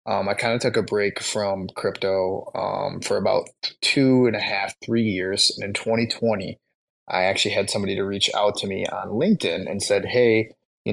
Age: 20-39